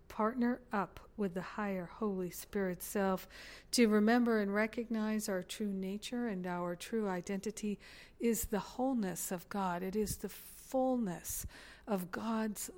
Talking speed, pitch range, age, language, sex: 140 wpm, 185-220 Hz, 50-69, English, female